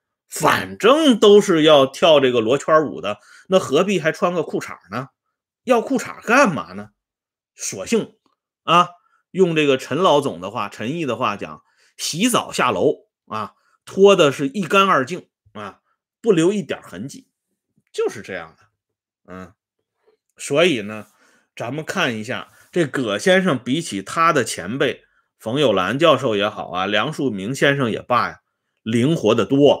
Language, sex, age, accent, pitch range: Swedish, male, 30-49, Chinese, 110-175 Hz